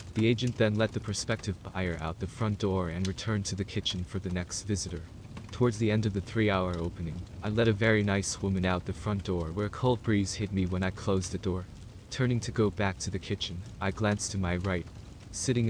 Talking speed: 235 wpm